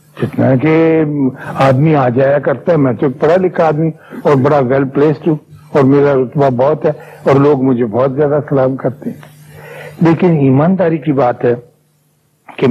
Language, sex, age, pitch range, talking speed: Urdu, male, 60-79, 125-155 Hz, 175 wpm